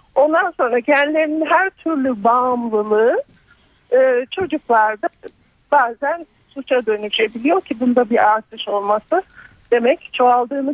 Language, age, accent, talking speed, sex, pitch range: Turkish, 50-69, native, 95 wpm, male, 245-330 Hz